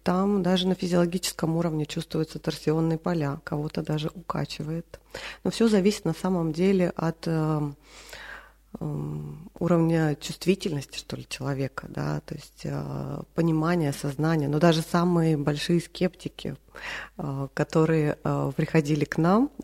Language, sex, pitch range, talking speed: Russian, female, 145-180 Hz, 105 wpm